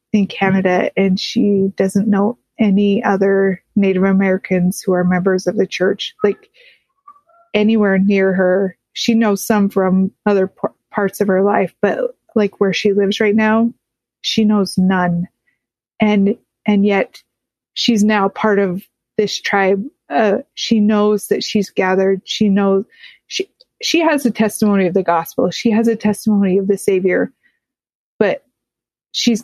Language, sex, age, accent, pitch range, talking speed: English, female, 30-49, American, 195-215 Hz, 150 wpm